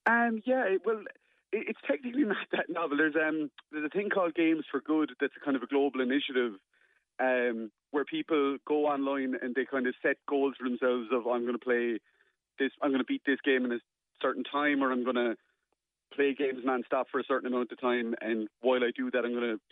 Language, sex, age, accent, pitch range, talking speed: English, male, 30-49, Irish, 125-150 Hz, 220 wpm